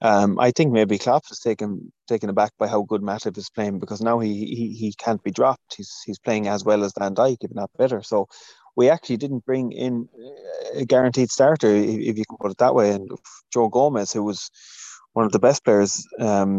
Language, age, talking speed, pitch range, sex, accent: English, 20-39, 220 wpm, 105-125 Hz, male, Irish